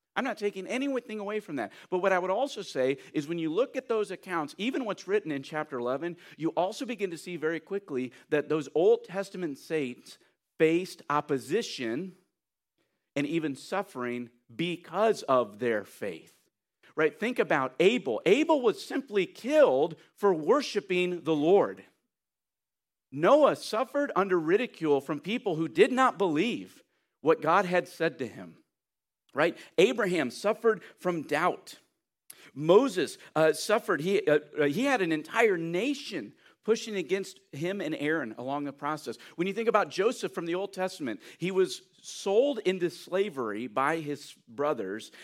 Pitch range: 150-210 Hz